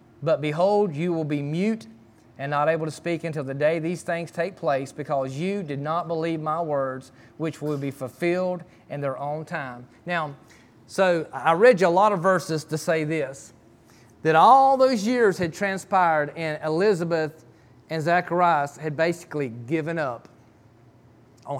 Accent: American